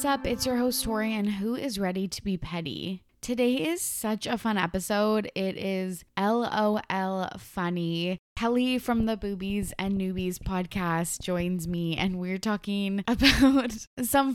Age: 20-39